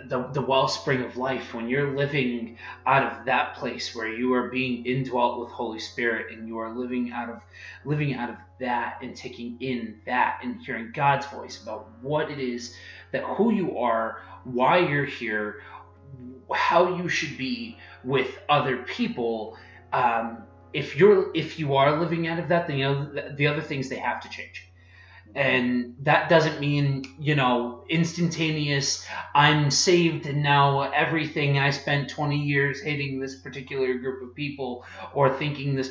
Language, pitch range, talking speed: English, 120-145 Hz, 165 wpm